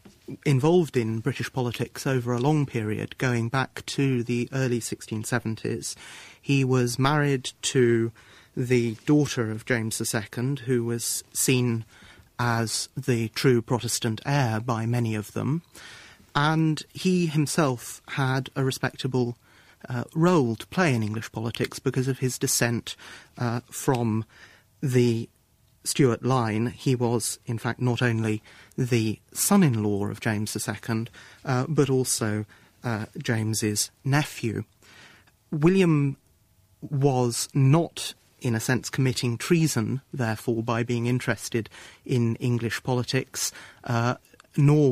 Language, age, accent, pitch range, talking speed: English, 30-49, British, 115-135 Hz, 120 wpm